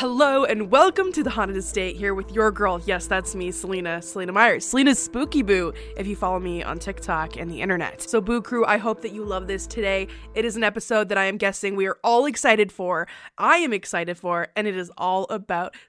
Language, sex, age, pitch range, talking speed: English, female, 20-39, 190-235 Hz, 230 wpm